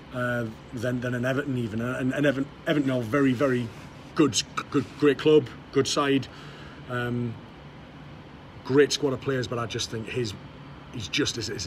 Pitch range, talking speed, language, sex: 125-145 Hz, 175 wpm, English, male